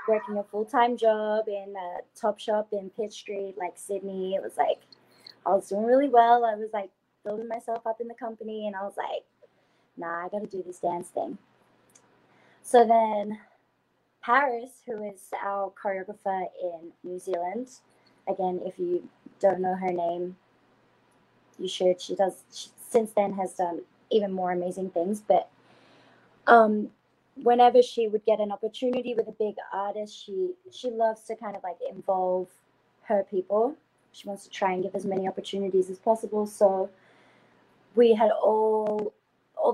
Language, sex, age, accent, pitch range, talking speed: English, female, 20-39, American, 190-225 Hz, 165 wpm